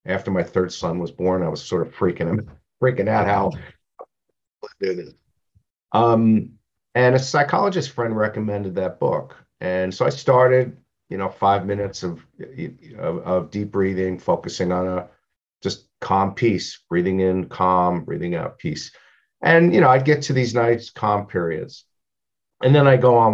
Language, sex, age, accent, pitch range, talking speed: English, male, 50-69, American, 95-120 Hz, 165 wpm